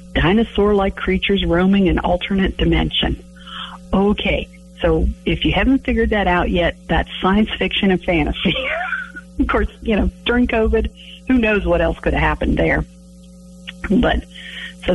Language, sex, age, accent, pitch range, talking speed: English, female, 50-69, American, 170-220 Hz, 150 wpm